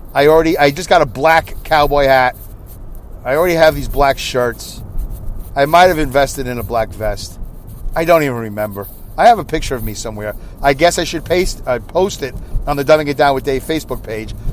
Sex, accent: male, American